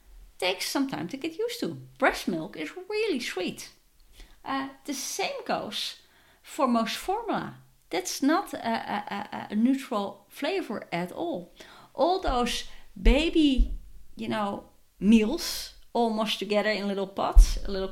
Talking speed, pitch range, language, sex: 140 wpm, 190-275 Hz, English, female